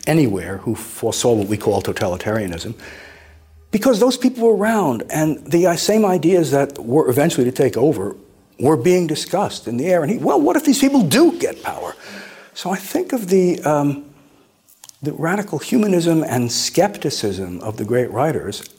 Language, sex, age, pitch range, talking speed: English, male, 60-79, 105-155 Hz, 165 wpm